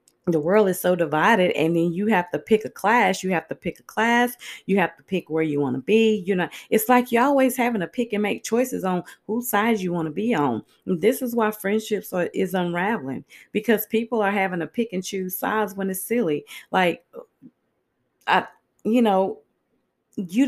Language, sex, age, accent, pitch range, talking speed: English, female, 30-49, American, 170-220 Hz, 210 wpm